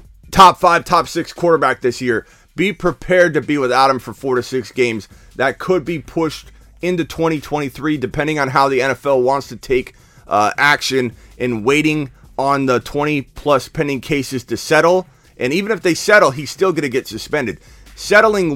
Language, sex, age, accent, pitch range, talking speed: English, male, 30-49, American, 100-150 Hz, 180 wpm